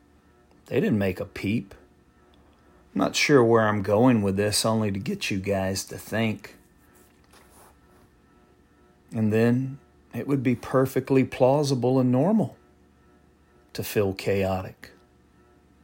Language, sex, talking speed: English, male, 120 wpm